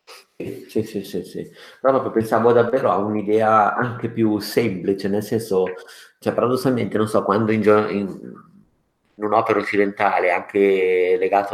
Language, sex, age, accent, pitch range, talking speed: Italian, male, 50-69, native, 95-110 Hz, 140 wpm